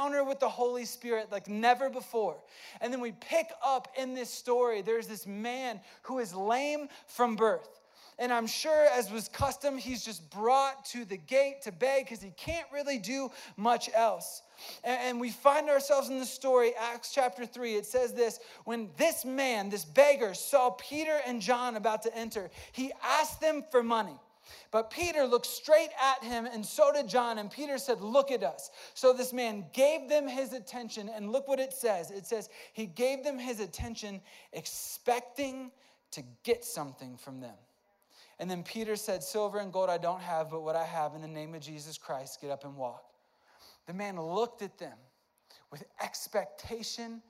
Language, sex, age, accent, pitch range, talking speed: English, male, 20-39, American, 200-265 Hz, 185 wpm